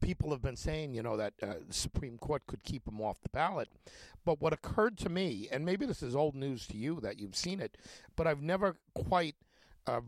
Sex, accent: male, American